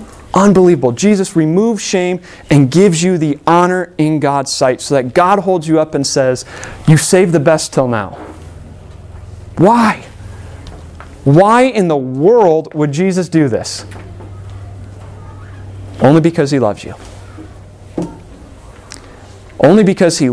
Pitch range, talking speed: 100-155 Hz, 125 wpm